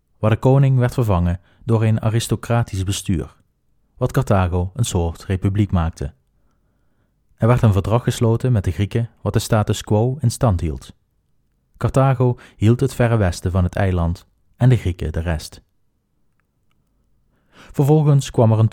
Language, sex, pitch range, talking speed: Dutch, male, 90-120 Hz, 150 wpm